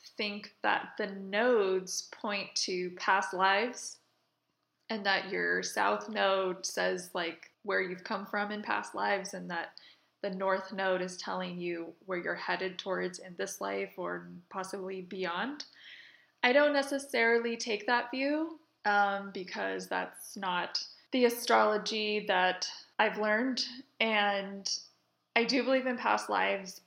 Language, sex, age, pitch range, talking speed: English, female, 20-39, 185-235 Hz, 140 wpm